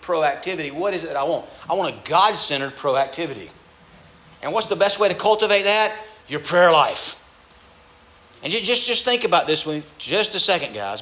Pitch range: 160-215 Hz